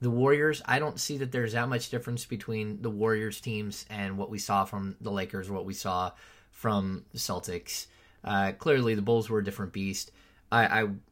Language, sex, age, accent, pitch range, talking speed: English, male, 20-39, American, 100-120 Hz, 195 wpm